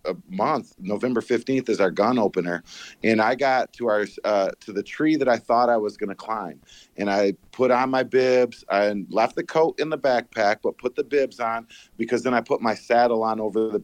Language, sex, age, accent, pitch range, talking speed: English, male, 40-59, American, 100-125 Hz, 220 wpm